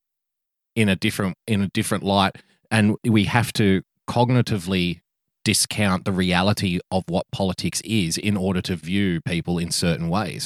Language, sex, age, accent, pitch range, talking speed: English, male, 30-49, Australian, 90-110 Hz, 155 wpm